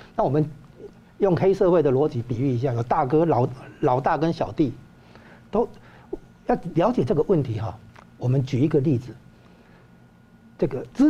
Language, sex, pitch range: Chinese, male, 120-165 Hz